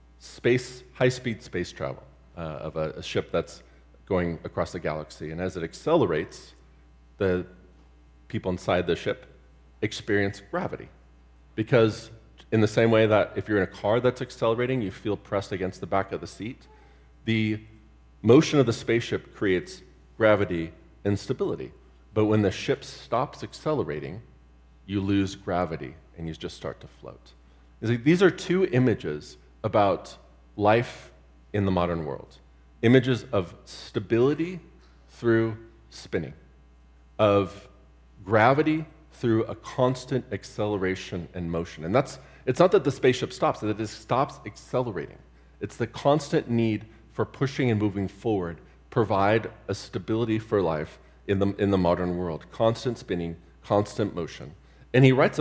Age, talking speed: 40-59, 145 wpm